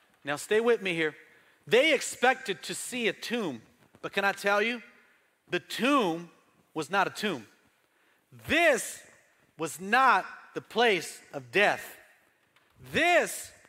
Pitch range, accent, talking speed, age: 170-240 Hz, American, 130 wpm, 40-59